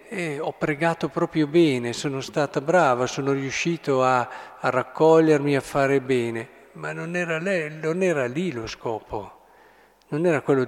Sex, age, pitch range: male, 50-69, 125-160 Hz